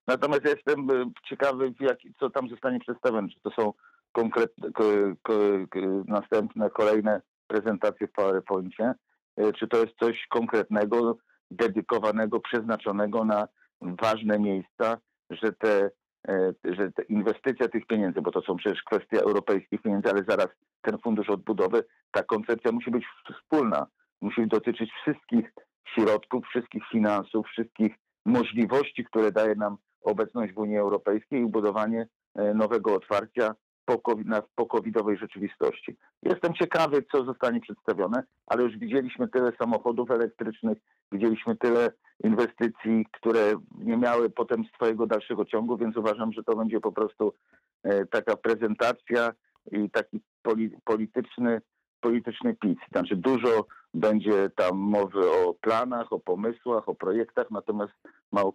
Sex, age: male, 50-69